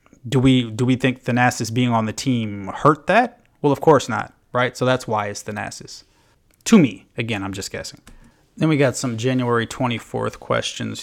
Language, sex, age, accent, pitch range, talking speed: English, male, 30-49, American, 105-130 Hz, 190 wpm